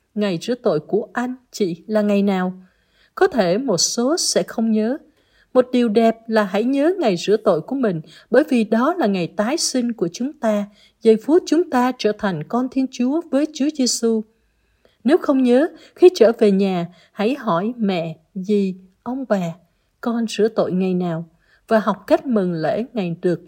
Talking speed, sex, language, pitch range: 190 wpm, female, Vietnamese, 185-265 Hz